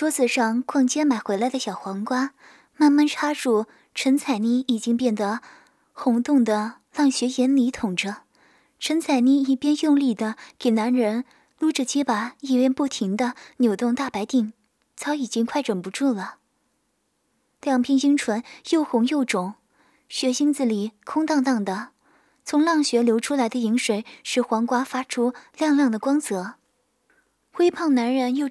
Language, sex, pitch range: Chinese, female, 225-275 Hz